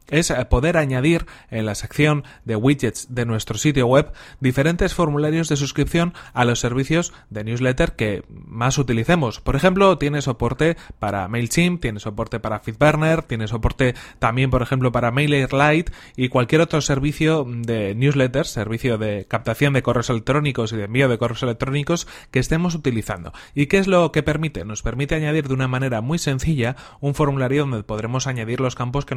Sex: male